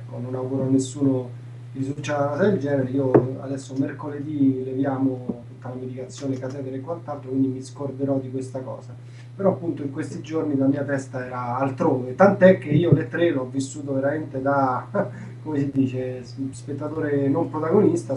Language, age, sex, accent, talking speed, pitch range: Italian, 20-39, male, native, 160 wpm, 125-140 Hz